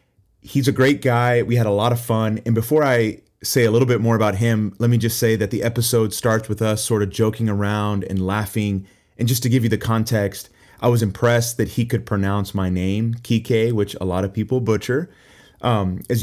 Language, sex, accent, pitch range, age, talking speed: English, male, American, 100-120 Hz, 30-49, 225 wpm